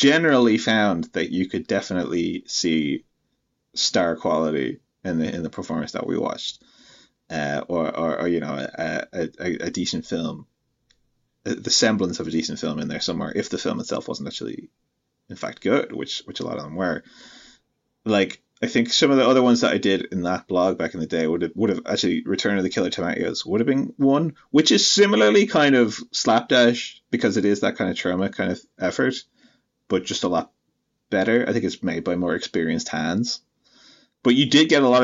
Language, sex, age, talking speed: English, male, 30-49, 205 wpm